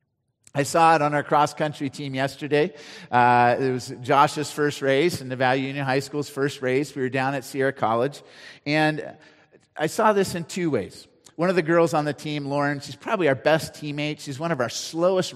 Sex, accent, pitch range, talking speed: male, American, 135-175 Hz, 205 wpm